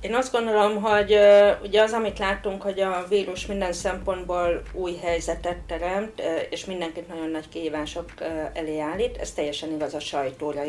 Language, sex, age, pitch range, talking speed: Hungarian, female, 40-59, 155-180 Hz, 150 wpm